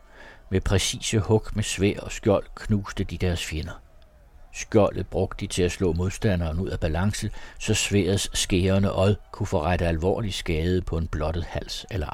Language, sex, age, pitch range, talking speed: Danish, male, 60-79, 85-100 Hz, 170 wpm